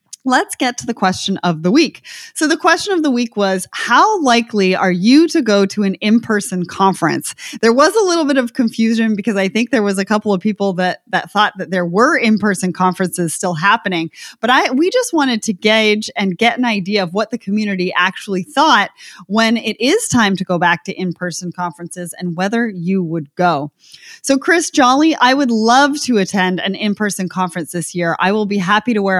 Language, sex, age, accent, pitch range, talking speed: English, female, 30-49, American, 185-250 Hz, 210 wpm